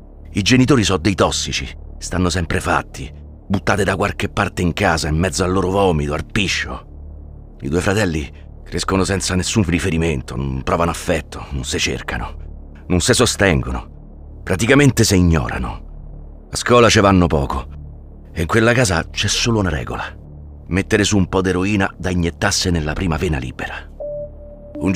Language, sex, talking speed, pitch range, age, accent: Italian, male, 155 wpm, 75-95 Hz, 40-59, native